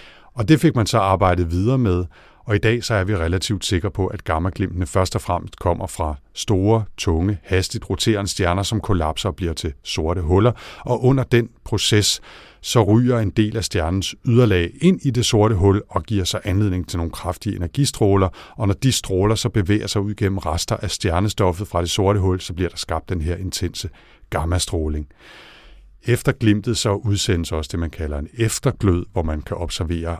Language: Danish